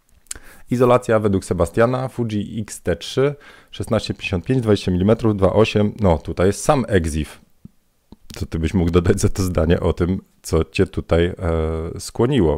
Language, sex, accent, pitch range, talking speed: Polish, male, native, 80-105 Hz, 140 wpm